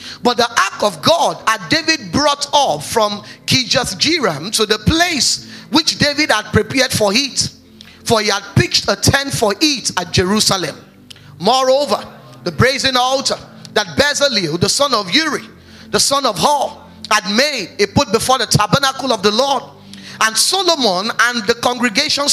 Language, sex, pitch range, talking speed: English, male, 205-275 Hz, 160 wpm